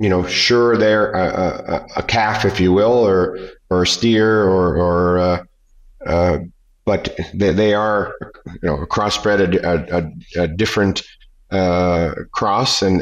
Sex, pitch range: male, 90-105 Hz